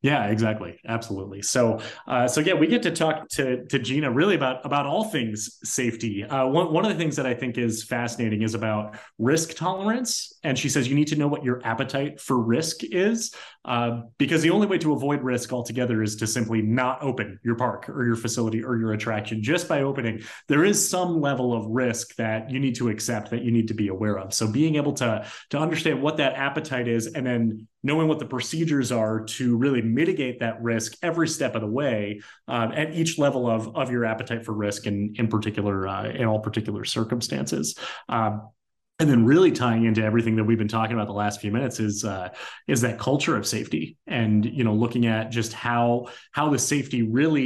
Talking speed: 215 wpm